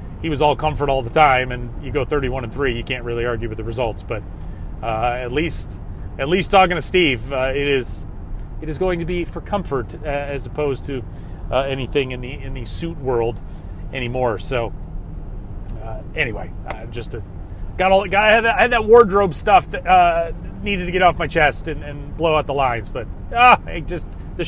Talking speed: 210 wpm